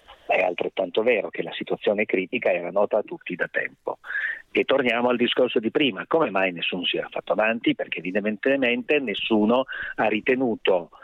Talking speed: 170 wpm